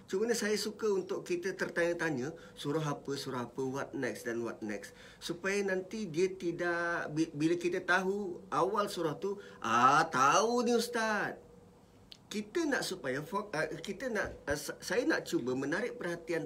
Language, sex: English, male